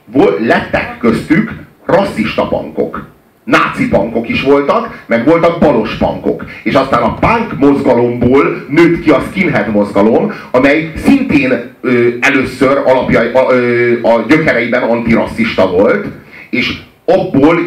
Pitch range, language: 120-195 Hz, Hungarian